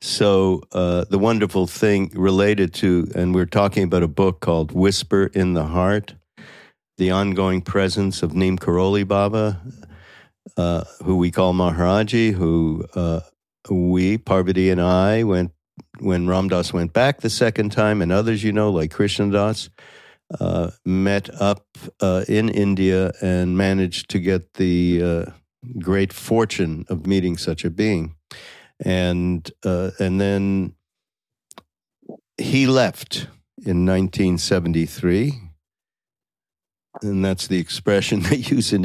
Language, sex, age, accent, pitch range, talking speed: English, male, 60-79, American, 90-100 Hz, 130 wpm